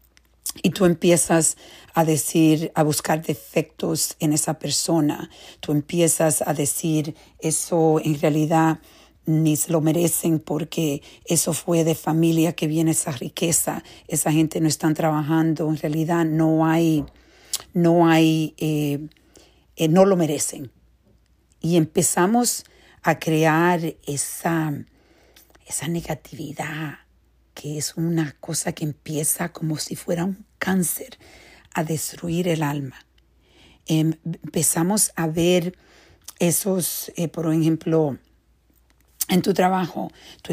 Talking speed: 120 wpm